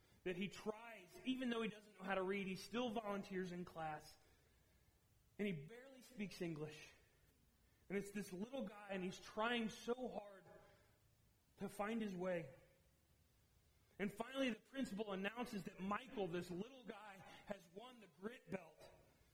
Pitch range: 195-245 Hz